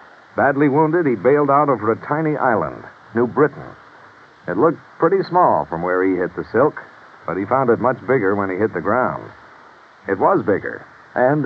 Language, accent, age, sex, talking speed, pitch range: English, American, 60-79, male, 190 wpm, 110-155 Hz